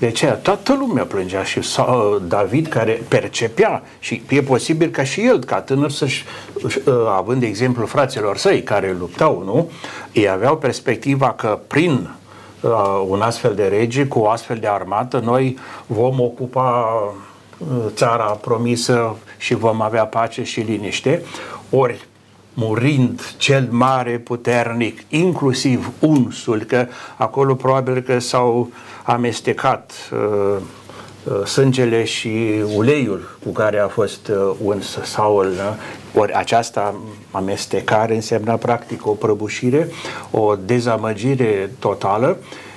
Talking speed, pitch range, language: 120 wpm, 110-135 Hz, Romanian